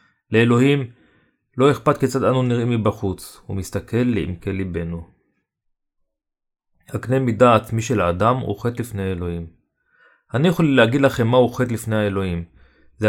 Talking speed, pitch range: 130 wpm, 105-130 Hz